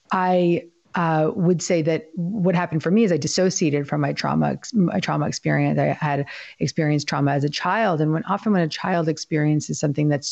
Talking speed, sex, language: 185 wpm, female, English